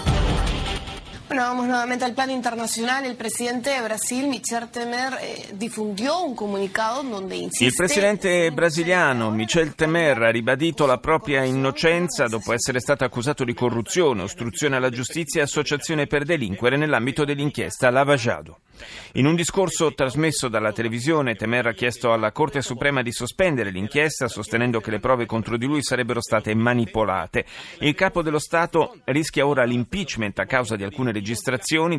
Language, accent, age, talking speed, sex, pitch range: Italian, native, 30-49, 120 wpm, male, 115-160 Hz